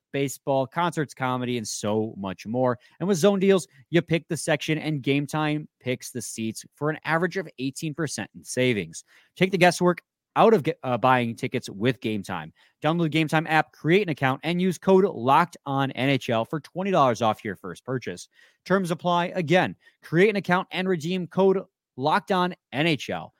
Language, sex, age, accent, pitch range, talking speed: English, male, 30-49, American, 125-180 Hz, 180 wpm